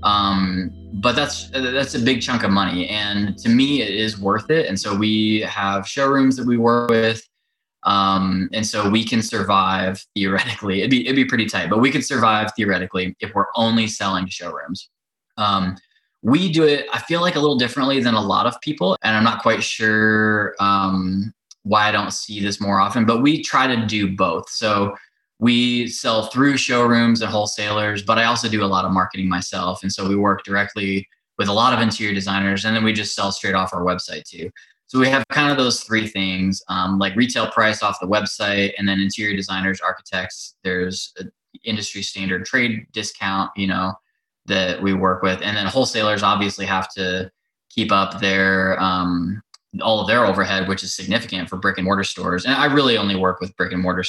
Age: 20-39